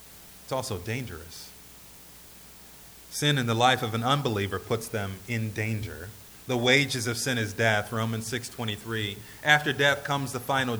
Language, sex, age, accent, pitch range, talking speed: English, male, 30-49, American, 85-125 Hz, 150 wpm